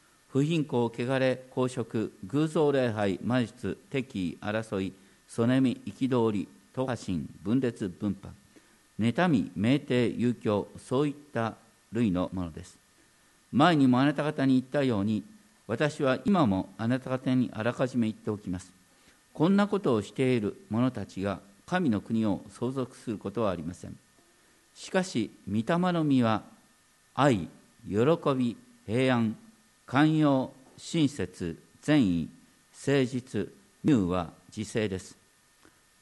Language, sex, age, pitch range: Japanese, male, 50-69, 100-140 Hz